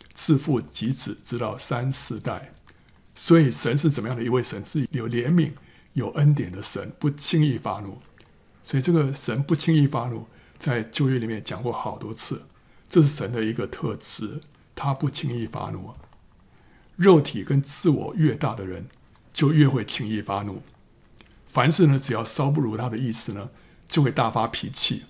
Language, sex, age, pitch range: Chinese, male, 60-79, 115-145 Hz